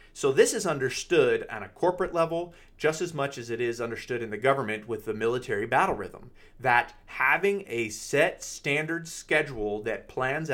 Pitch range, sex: 120-190 Hz, male